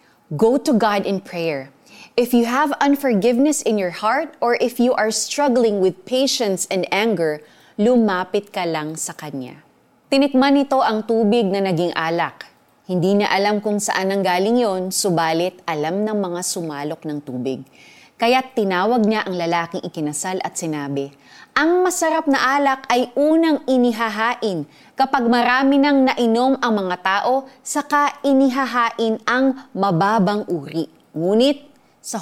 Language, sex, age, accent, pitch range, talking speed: Filipino, female, 30-49, native, 175-255 Hz, 145 wpm